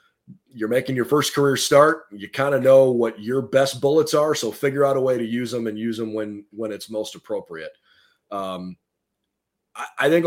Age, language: 30-49, English